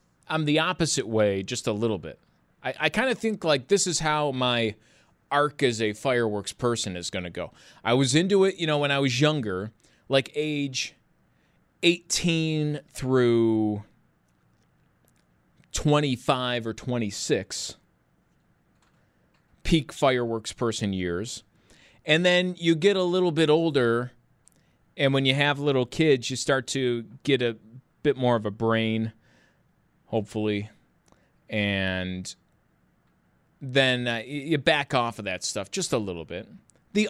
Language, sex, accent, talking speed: English, male, American, 140 wpm